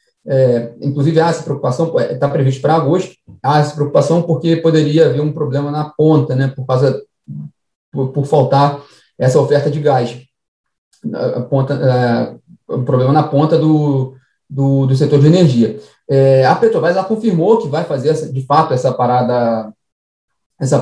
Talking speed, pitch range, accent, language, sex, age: 165 wpm, 135-175 Hz, Brazilian, Portuguese, male, 20-39